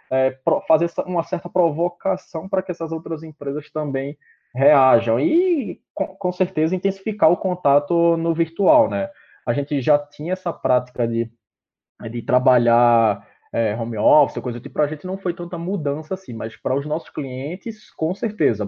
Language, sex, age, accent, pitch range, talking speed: Portuguese, male, 20-39, Brazilian, 130-175 Hz, 165 wpm